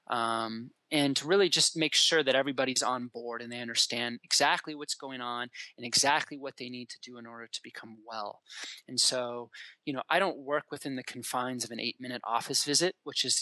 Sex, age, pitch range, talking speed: male, 20-39, 120-140 Hz, 215 wpm